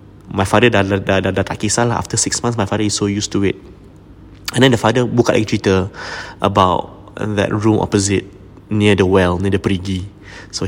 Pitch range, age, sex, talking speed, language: 100-115 Hz, 20-39, male, 195 wpm, English